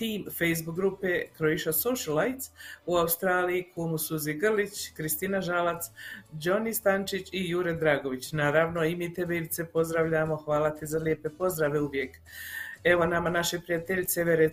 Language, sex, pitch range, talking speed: Croatian, female, 155-180 Hz, 130 wpm